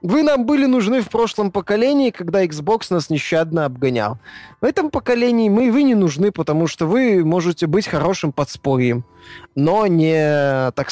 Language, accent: Russian, native